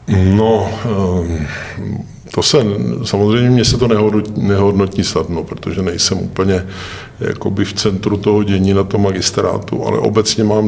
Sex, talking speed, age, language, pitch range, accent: male, 130 wpm, 50-69, Czech, 95-110 Hz, native